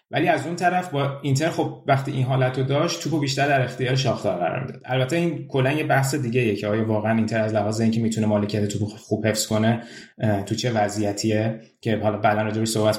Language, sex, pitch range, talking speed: Persian, male, 110-135 Hz, 205 wpm